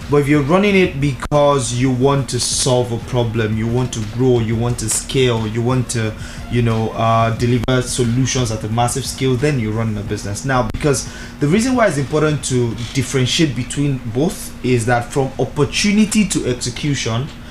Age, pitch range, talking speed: 20-39, 120-140 Hz, 185 wpm